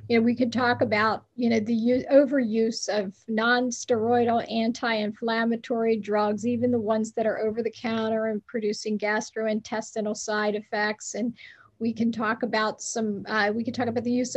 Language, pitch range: English, 215-245 Hz